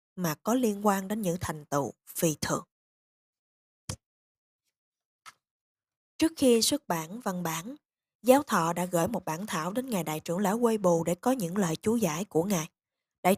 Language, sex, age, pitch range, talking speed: Vietnamese, female, 20-39, 170-225 Hz, 175 wpm